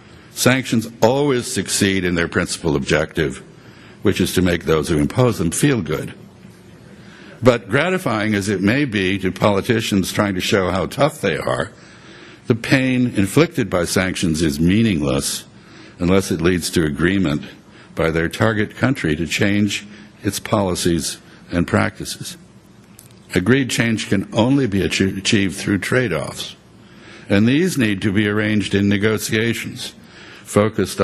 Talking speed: 135 wpm